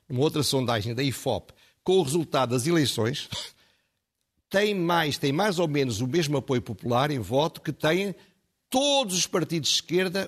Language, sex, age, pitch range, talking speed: Portuguese, male, 60-79, 135-180 Hz, 165 wpm